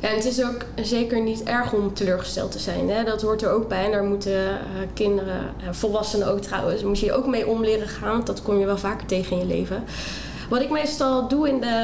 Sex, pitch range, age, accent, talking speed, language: female, 200-230 Hz, 20-39, Dutch, 240 wpm, Dutch